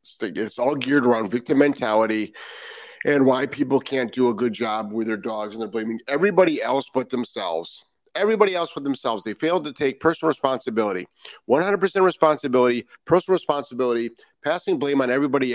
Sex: male